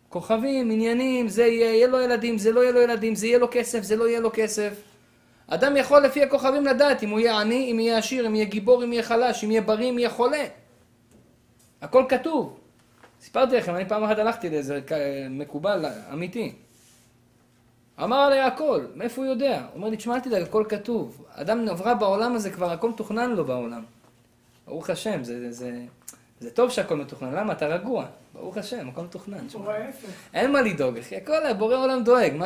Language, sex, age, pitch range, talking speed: Hebrew, male, 20-39, 180-245 Hz, 135 wpm